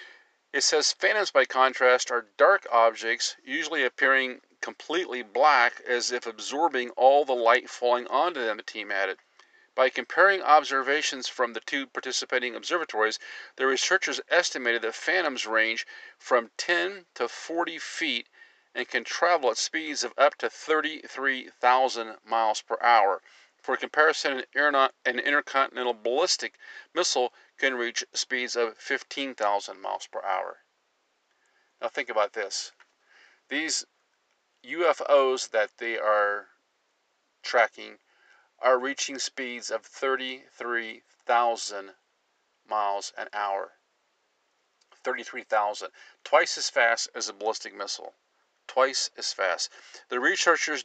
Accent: American